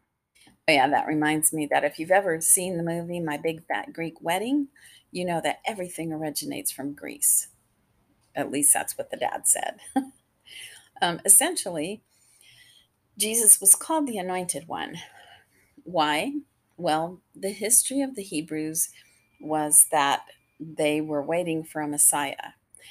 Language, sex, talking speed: English, female, 140 wpm